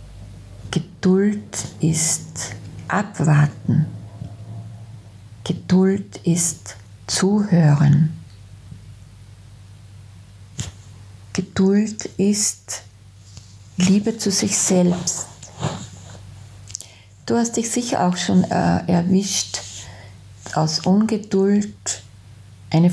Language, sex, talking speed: German, female, 60 wpm